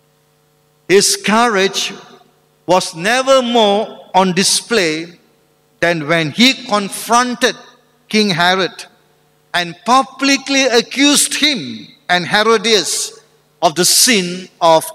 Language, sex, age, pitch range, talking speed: English, male, 50-69, 160-235 Hz, 90 wpm